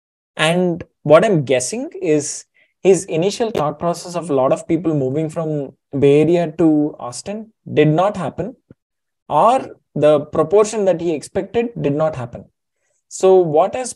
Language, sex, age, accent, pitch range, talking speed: English, male, 20-39, Indian, 140-180 Hz, 150 wpm